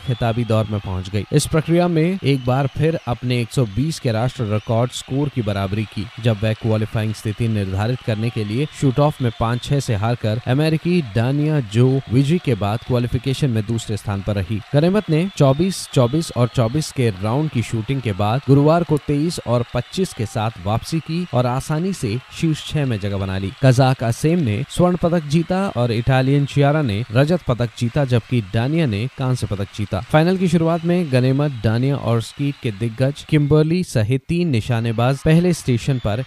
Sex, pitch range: male, 110-150 Hz